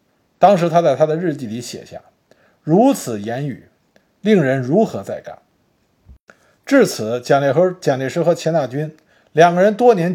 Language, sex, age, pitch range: Chinese, male, 50-69, 135-195 Hz